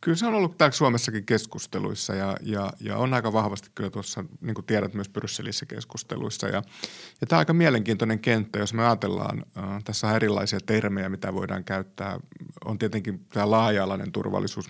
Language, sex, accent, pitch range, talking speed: Finnish, male, native, 95-110 Hz, 180 wpm